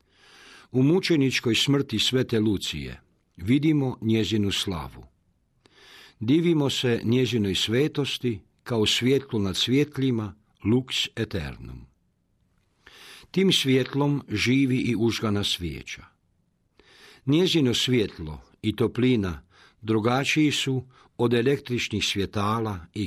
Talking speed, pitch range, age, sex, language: 90 wpm, 100-130 Hz, 50-69, male, Croatian